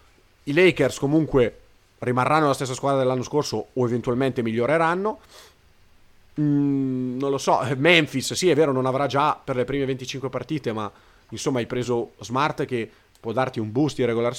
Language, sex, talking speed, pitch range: Italian, male, 165 wpm, 115-145 Hz